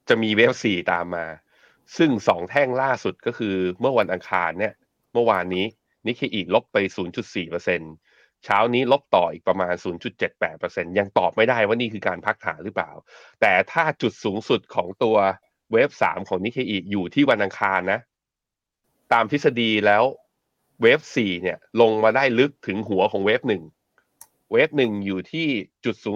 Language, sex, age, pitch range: Thai, male, 30-49, 95-120 Hz